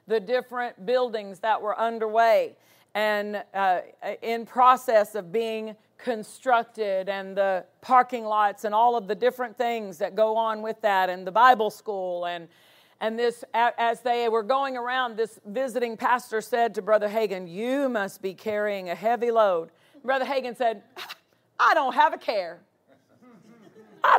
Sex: female